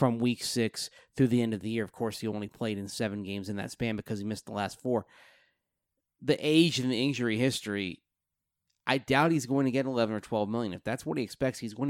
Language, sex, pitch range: English, male, 100-135 Hz